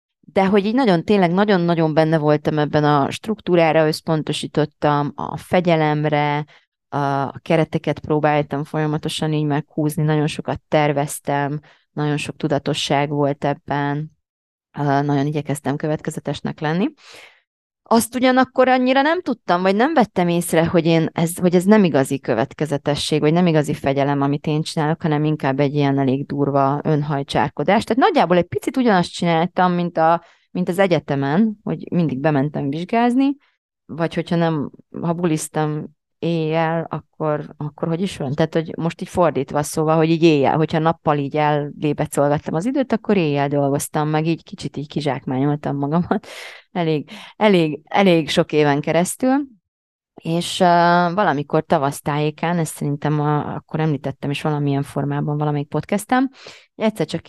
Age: 30-49